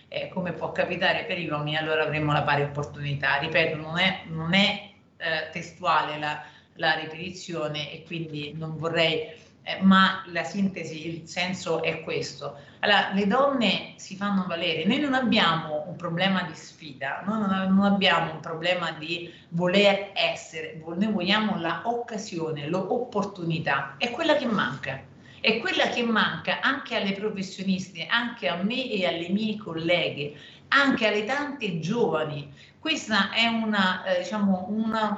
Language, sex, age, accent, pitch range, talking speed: Italian, female, 40-59, native, 160-215 Hz, 145 wpm